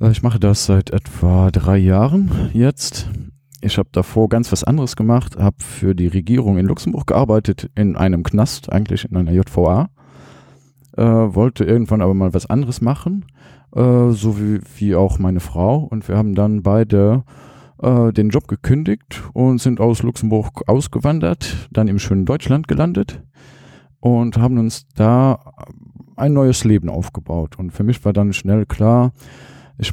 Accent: German